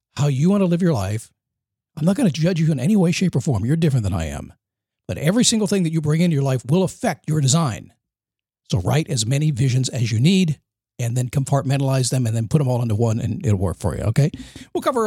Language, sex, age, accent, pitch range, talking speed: English, male, 50-69, American, 115-170 Hz, 260 wpm